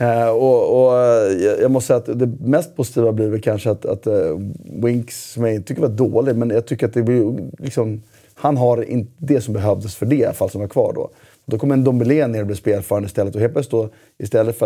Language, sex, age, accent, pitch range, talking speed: Swedish, male, 30-49, native, 110-130 Hz, 215 wpm